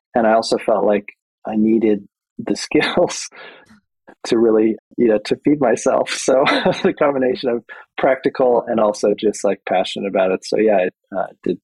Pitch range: 105-125 Hz